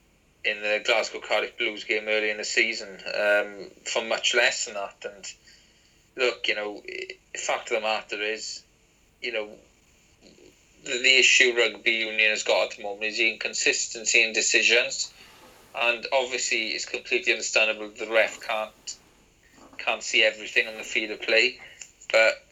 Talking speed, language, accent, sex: 155 wpm, English, British, male